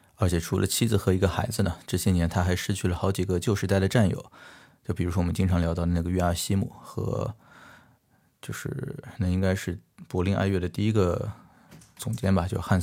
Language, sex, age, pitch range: Chinese, male, 20-39, 90-110 Hz